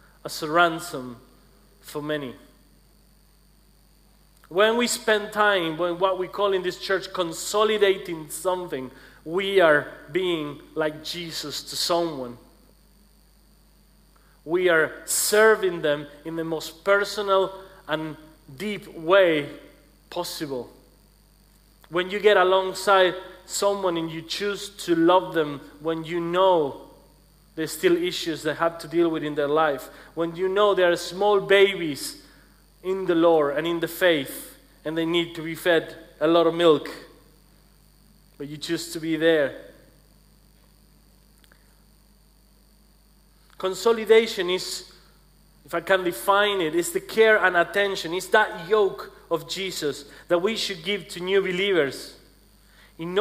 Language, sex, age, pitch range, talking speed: English, male, 40-59, 165-195 Hz, 130 wpm